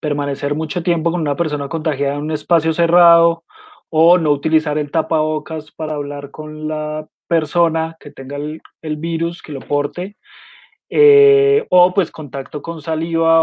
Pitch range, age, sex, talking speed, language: 145-175 Hz, 20-39, male, 155 wpm, Spanish